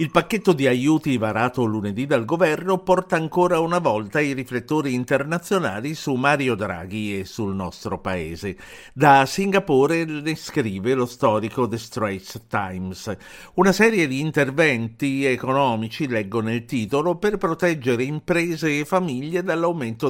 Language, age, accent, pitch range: Italian, 50-69, native, 100-150 Hz